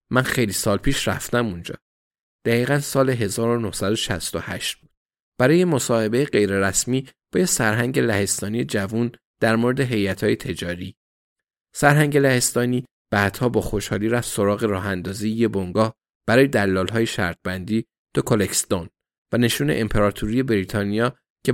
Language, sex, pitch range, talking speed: Persian, male, 105-130 Hz, 115 wpm